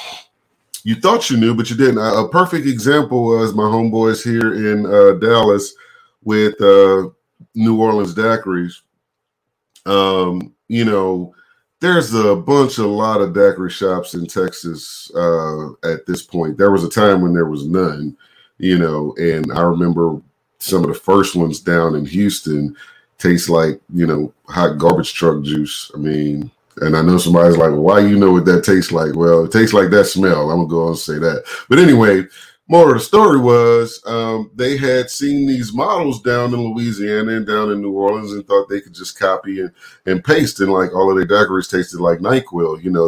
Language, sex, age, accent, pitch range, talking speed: English, male, 40-59, American, 85-110 Hz, 190 wpm